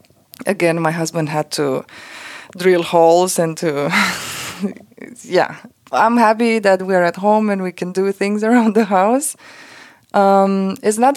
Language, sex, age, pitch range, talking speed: English, female, 20-39, 180-240 Hz, 145 wpm